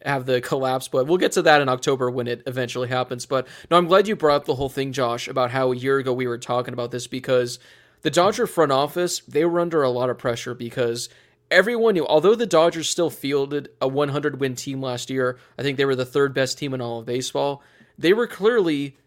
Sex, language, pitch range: male, English, 125-155 Hz